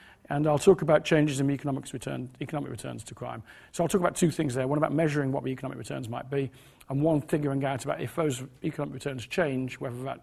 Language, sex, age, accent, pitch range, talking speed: English, male, 40-59, British, 130-170 Hz, 235 wpm